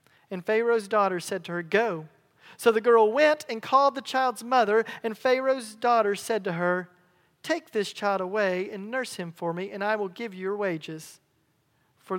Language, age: English, 40-59